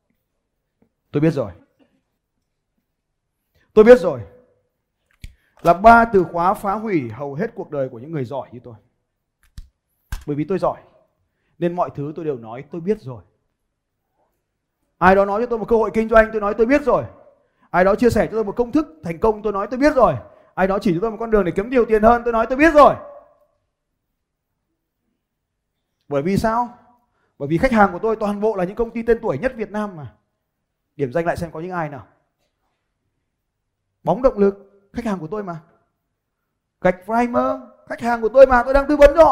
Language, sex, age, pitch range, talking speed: Vietnamese, male, 20-39, 135-220 Hz, 205 wpm